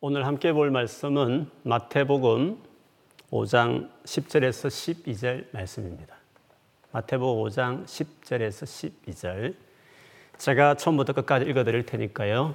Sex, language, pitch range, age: male, Korean, 110-135 Hz, 40-59